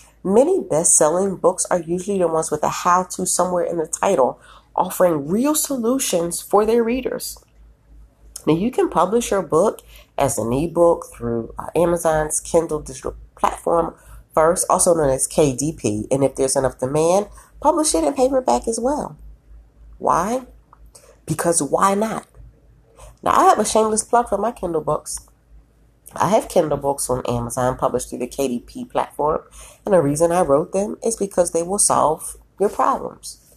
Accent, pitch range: American, 140-195 Hz